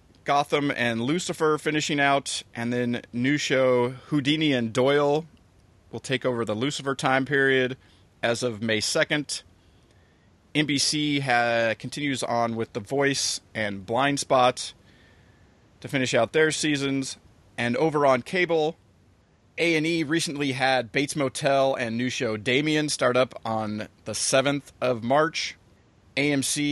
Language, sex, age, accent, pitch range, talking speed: English, male, 30-49, American, 110-140 Hz, 130 wpm